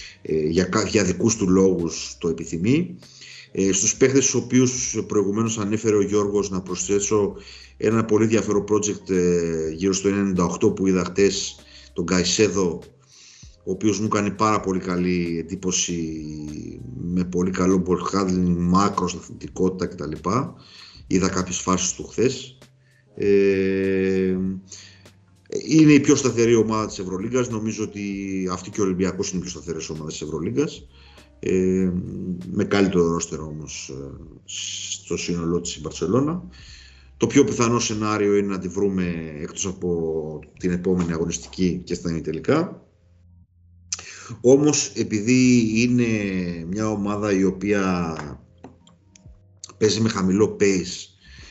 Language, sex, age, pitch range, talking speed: Greek, male, 50-69, 85-105 Hz, 125 wpm